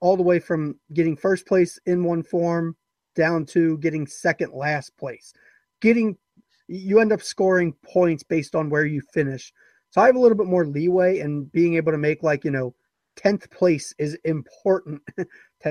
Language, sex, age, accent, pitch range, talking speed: English, male, 30-49, American, 155-190 Hz, 180 wpm